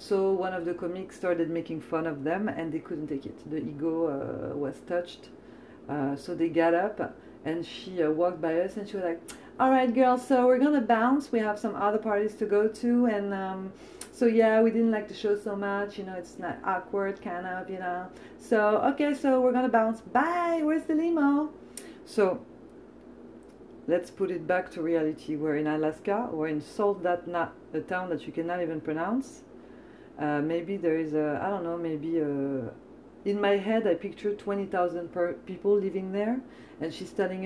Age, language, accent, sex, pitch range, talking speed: 40-59, English, French, female, 165-210 Hz, 195 wpm